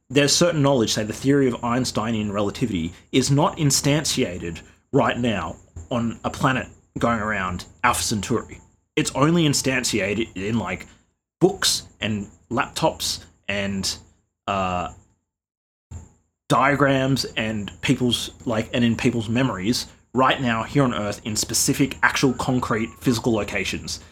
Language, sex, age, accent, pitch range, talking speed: English, male, 30-49, Australian, 95-125 Hz, 125 wpm